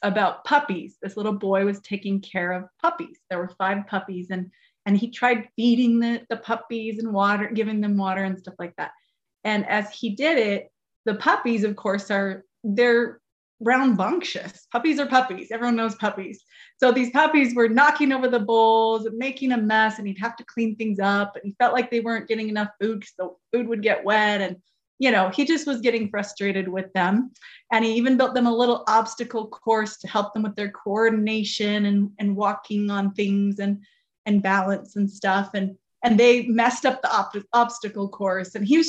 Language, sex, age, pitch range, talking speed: English, female, 30-49, 200-245 Hz, 195 wpm